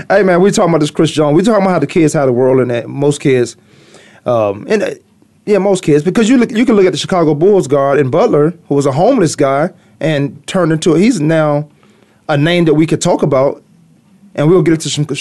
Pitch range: 140-175 Hz